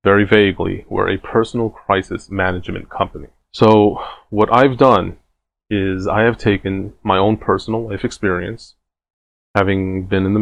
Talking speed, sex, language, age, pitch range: 145 wpm, male, English, 30-49, 95-110 Hz